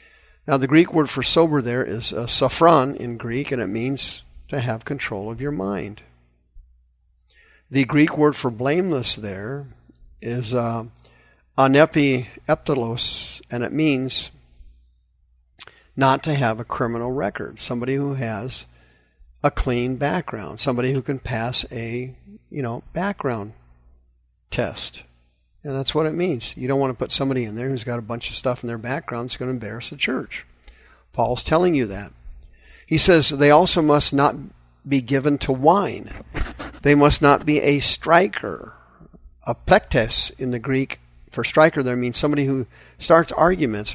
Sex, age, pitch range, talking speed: male, 50-69, 105-145 Hz, 155 wpm